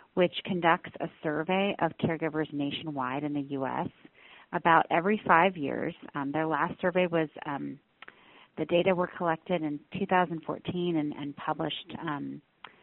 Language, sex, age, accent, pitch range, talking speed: English, female, 40-59, American, 155-190 Hz, 140 wpm